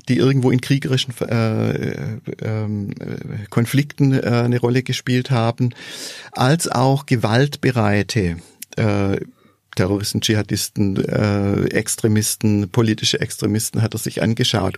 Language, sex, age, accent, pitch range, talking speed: German, male, 50-69, German, 115-140 Hz, 105 wpm